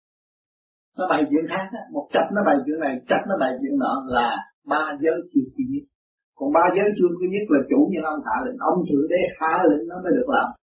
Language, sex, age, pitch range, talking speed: Vietnamese, male, 60-79, 175-285 Hz, 235 wpm